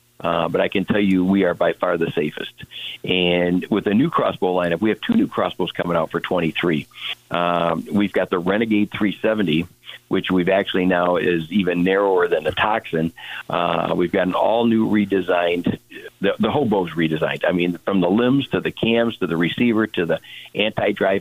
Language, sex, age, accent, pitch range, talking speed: English, male, 50-69, American, 90-110 Hz, 190 wpm